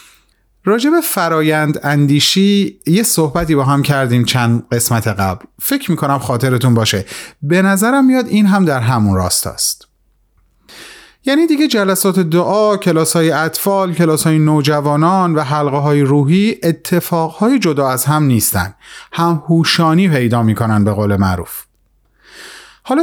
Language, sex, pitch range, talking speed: Persian, male, 120-195 Hz, 130 wpm